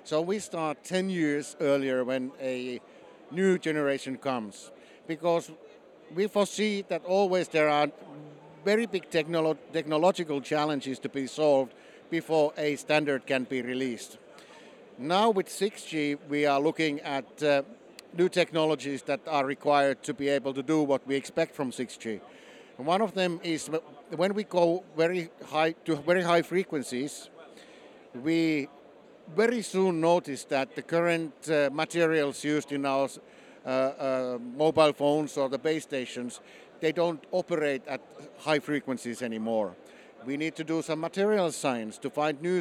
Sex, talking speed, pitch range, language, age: male, 150 wpm, 135-170 Hz, Arabic, 60-79